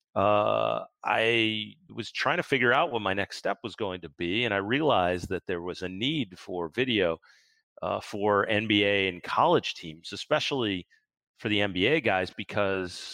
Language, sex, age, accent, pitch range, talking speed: English, male, 40-59, American, 95-115 Hz, 170 wpm